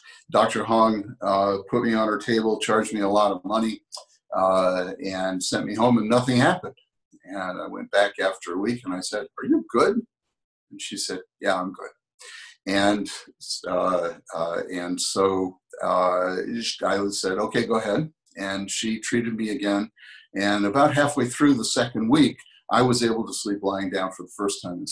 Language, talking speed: English, 185 wpm